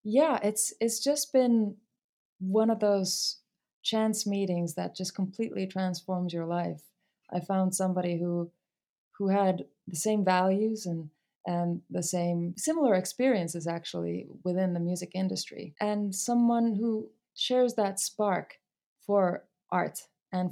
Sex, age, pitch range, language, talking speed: female, 20-39, 175-205 Hz, English, 130 wpm